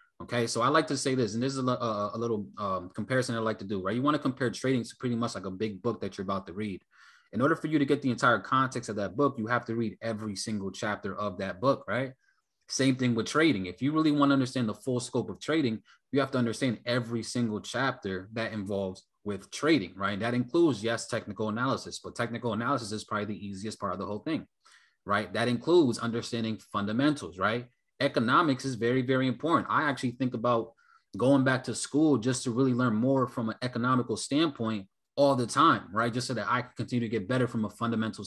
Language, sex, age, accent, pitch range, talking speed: English, male, 20-39, American, 110-140 Hz, 230 wpm